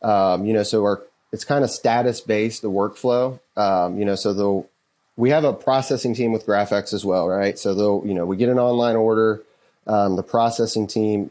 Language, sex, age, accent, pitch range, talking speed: English, male, 30-49, American, 100-115 Hz, 205 wpm